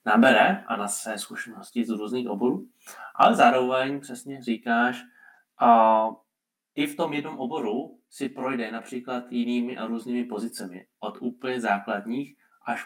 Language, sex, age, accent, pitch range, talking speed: Czech, male, 20-39, native, 110-130 Hz, 135 wpm